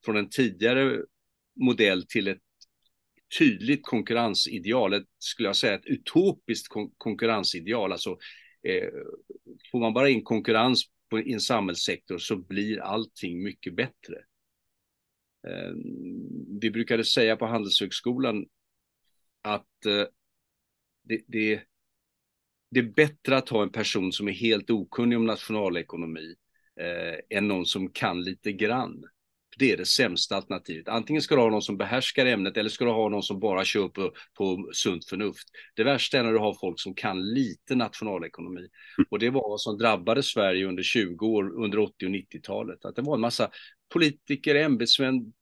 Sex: male